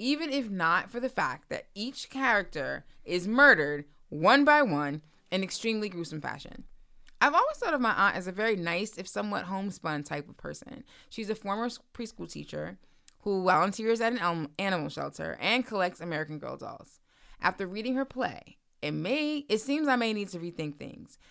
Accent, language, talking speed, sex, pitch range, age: American, English, 180 wpm, female, 165-235 Hz, 20-39